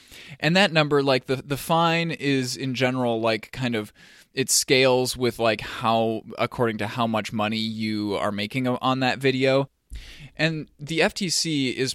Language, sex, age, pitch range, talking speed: English, male, 20-39, 110-130 Hz, 165 wpm